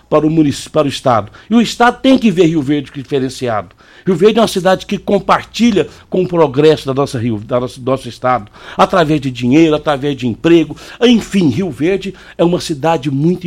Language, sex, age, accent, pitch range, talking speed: Portuguese, male, 60-79, Brazilian, 130-165 Hz, 205 wpm